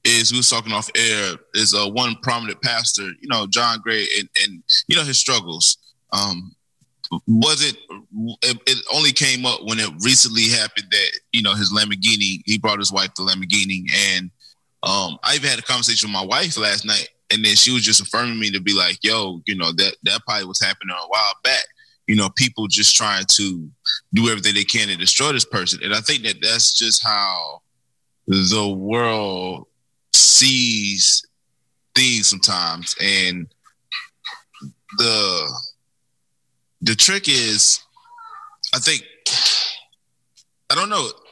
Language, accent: Spanish, American